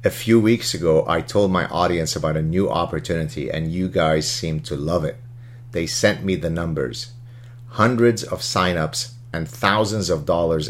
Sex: male